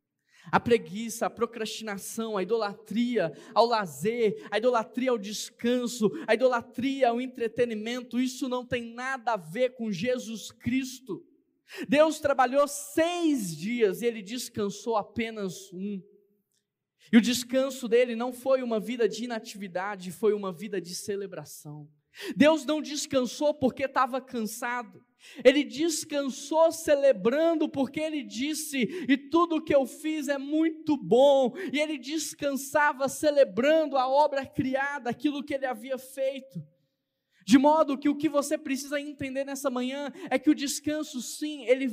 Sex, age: male, 20-39